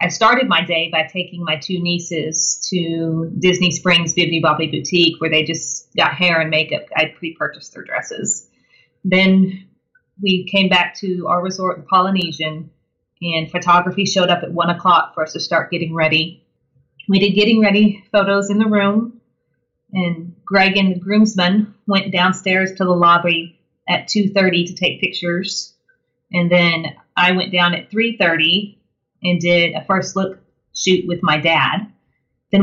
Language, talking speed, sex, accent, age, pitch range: English, 160 wpm, female, American, 30-49, 165-195 Hz